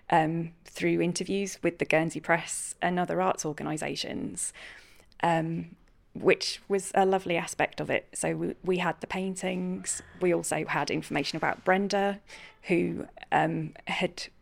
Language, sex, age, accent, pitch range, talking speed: English, female, 20-39, British, 165-185 Hz, 140 wpm